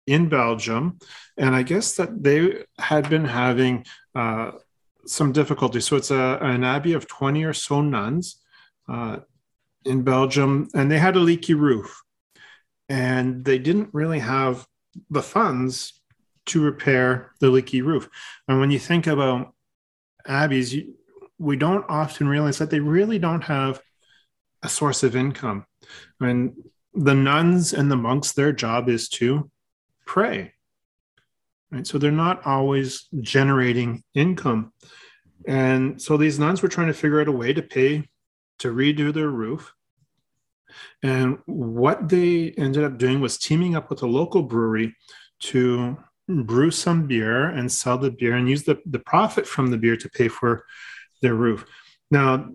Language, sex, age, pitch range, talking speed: English, male, 40-59, 130-155 Hz, 150 wpm